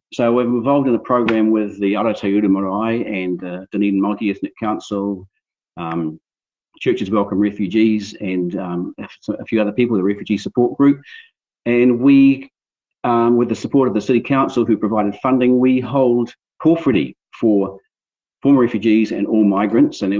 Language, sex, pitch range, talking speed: English, male, 95-120 Hz, 155 wpm